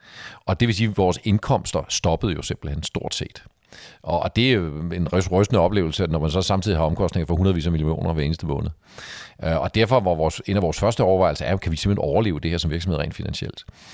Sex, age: male, 40-59